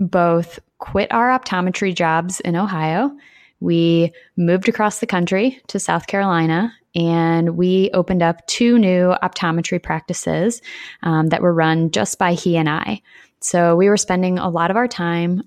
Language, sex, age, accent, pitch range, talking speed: English, female, 20-39, American, 165-200 Hz, 160 wpm